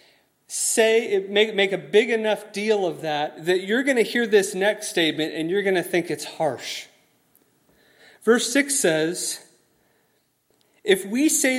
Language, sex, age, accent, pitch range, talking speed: English, male, 30-49, American, 170-225 Hz, 160 wpm